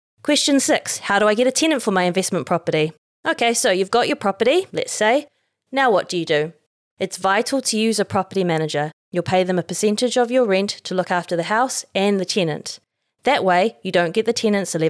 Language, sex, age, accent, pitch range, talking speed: English, female, 20-39, Australian, 180-240 Hz, 220 wpm